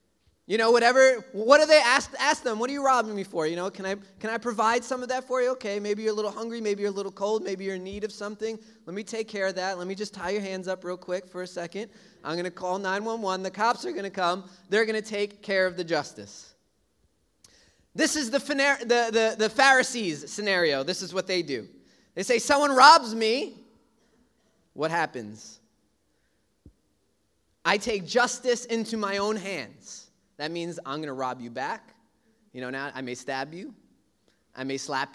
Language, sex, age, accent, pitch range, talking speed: English, male, 20-39, American, 175-235 Hz, 215 wpm